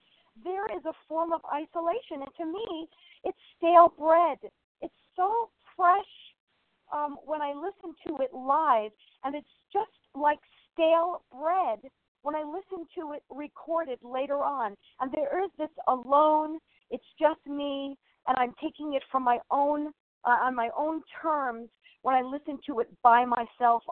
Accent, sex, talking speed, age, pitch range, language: American, female, 160 wpm, 50-69, 245-315 Hz, English